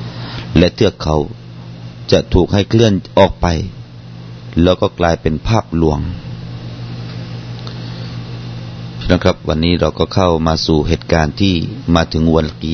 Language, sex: Thai, male